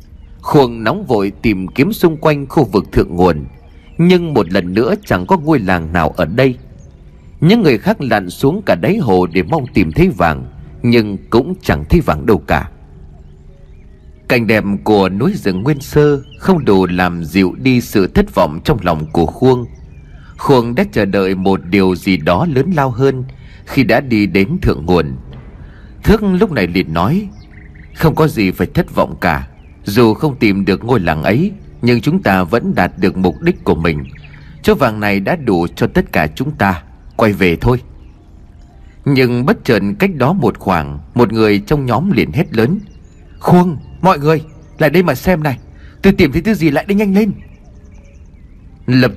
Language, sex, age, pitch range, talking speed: Vietnamese, male, 30-49, 85-140 Hz, 185 wpm